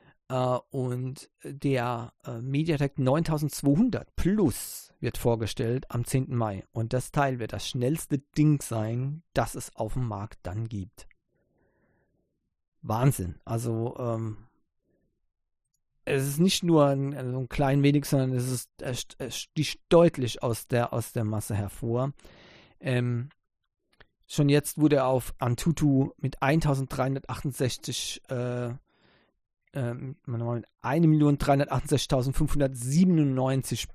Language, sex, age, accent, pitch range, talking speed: English, male, 40-59, German, 120-145 Hz, 100 wpm